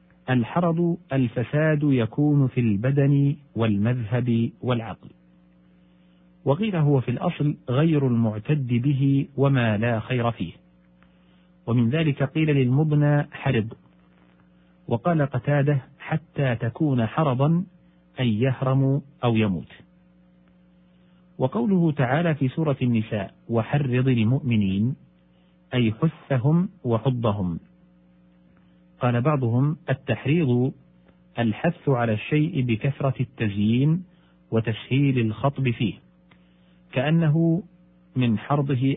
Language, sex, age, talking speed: Arabic, male, 50-69, 85 wpm